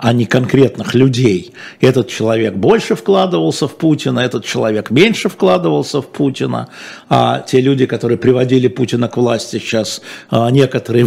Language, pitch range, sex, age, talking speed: Russian, 120-170 Hz, male, 50-69, 140 wpm